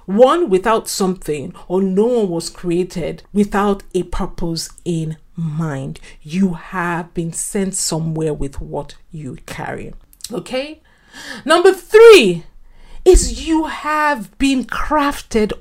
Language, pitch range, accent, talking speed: English, 190-265 Hz, Nigerian, 115 wpm